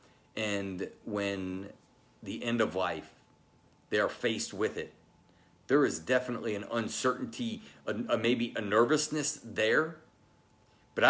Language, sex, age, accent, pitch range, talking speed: English, male, 40-59, American, 105-145 Hz, 125 wpm